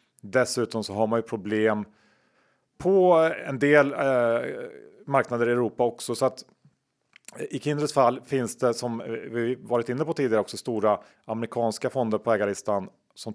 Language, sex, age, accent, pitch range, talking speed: Swedish, male, 40-59, Norwegian, 110-125 Hz, 155 wpm